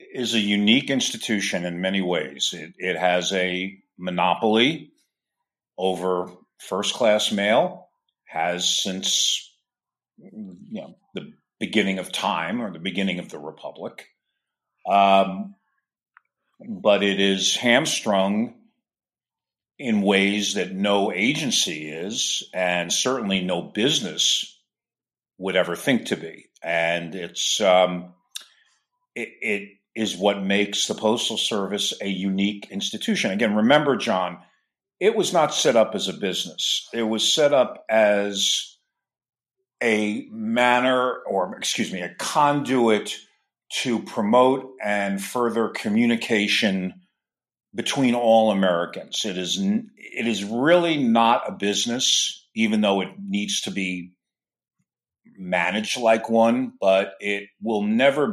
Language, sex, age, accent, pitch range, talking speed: English, male, 50-69, American, 95-145 Hz, 120 wpm